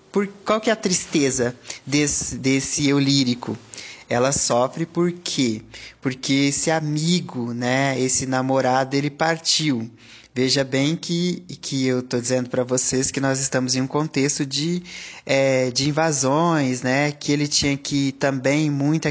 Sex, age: male, 20-39